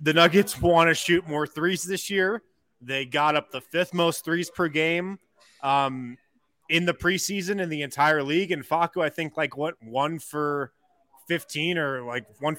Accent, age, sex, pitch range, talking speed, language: American, 20-39, male, 135-170 Hz, 180 wpm, English